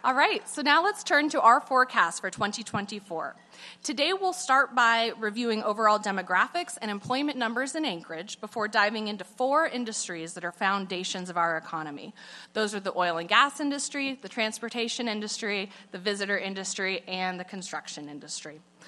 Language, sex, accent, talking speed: English, female, American, 160 wpm